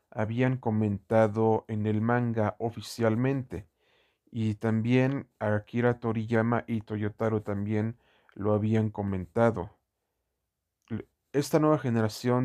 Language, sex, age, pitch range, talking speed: Spanish, male, 40-59, 105-120 Hz, 90 wpm